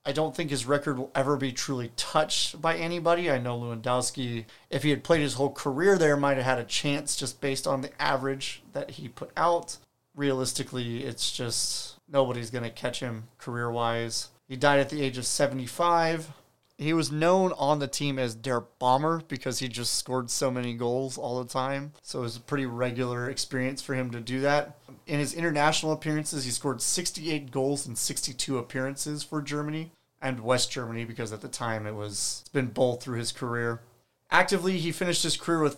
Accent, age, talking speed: American, 30-49, 195 wpm